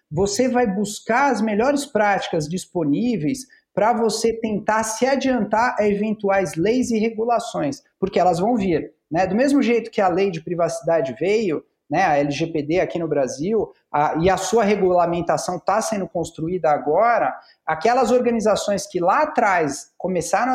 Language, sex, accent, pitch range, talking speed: Portuguese, male, Brazilian, 180-240 Hz, 150 wpm